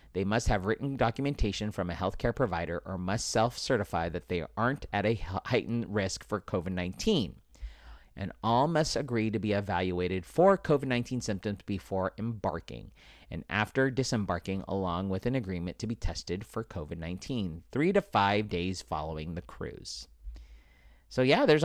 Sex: male